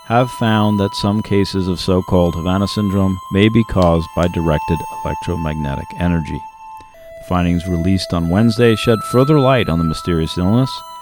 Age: 50-69